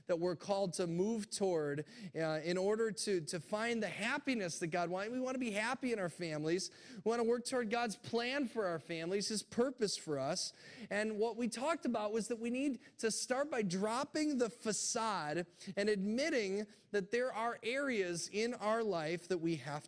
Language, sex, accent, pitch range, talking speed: English, male, American, 180-235 Hz, 200 wpm